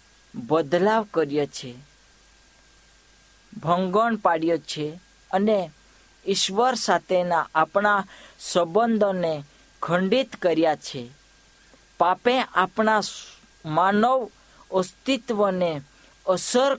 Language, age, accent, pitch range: Hindi, 50-69, native, 160-220 Hz